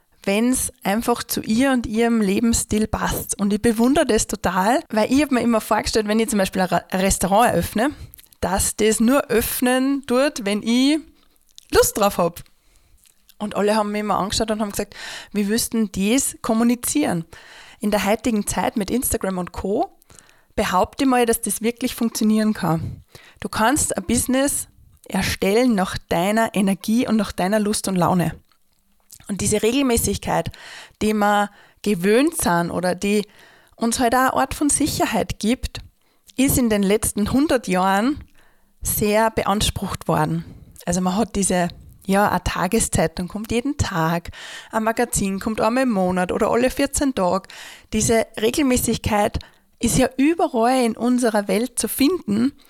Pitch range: 200-250 Hz